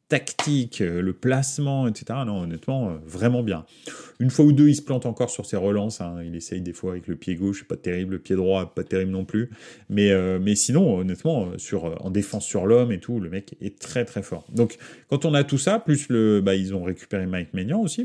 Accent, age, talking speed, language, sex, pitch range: French, 30-49, 235 wpm, French, male, 95-125 Hz